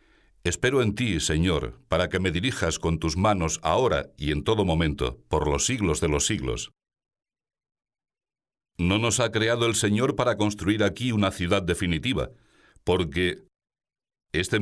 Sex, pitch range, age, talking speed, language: male, 90-115 Hz, 60-79, 150 wpm, Spanish